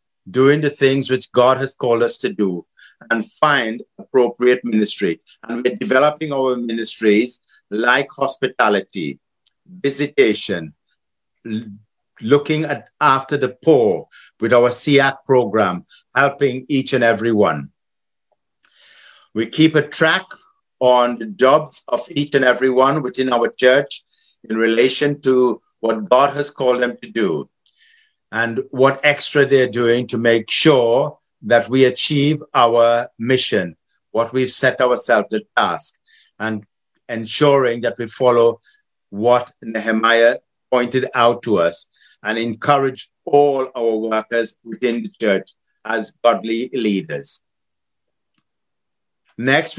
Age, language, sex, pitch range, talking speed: 60-79, Filipino, male, 115-145 Hz, 125 wpm